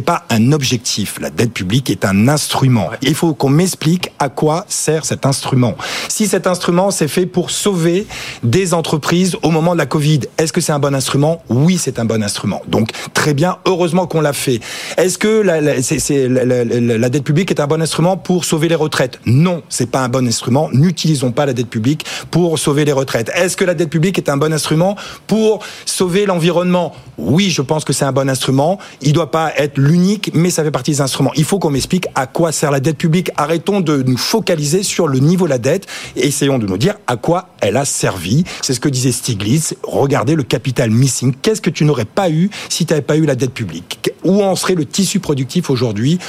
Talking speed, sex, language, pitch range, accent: 230 wpm, male, French, 135-180 Hz, French